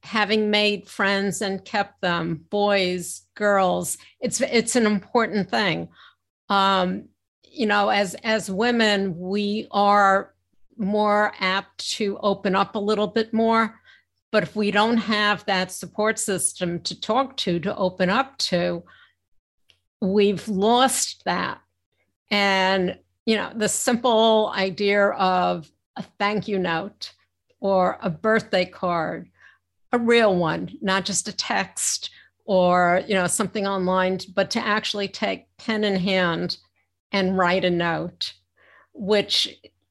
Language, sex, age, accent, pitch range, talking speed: English, female, 60-79, American, 180-210 Hz, 130 wpm